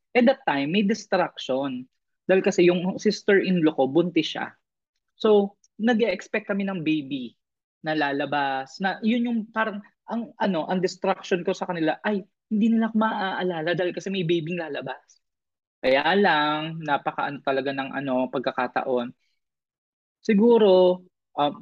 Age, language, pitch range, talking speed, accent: 20-39, Filipino, 155-225 Hz, 140 wpm, native